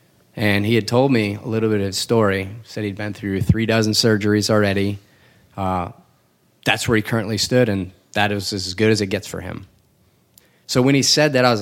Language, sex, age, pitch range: English, male, 20-39, 100-120 Hz